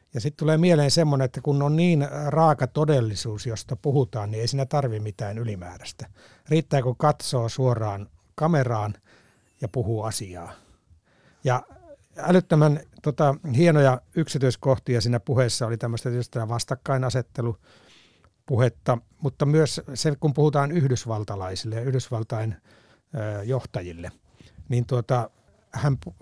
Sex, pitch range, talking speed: male, 110-145 Hz, 110 wpm